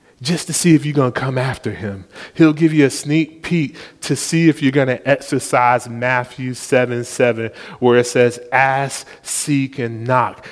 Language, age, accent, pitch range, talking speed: English, 30-49, American, 130-155 Hz, 190 wpm